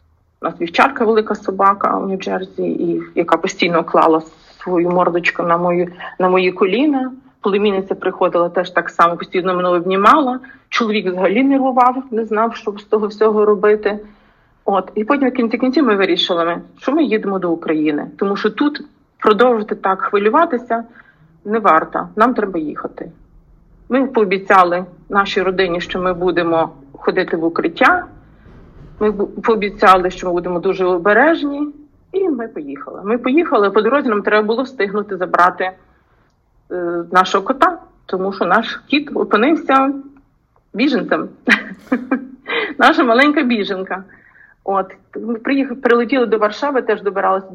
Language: English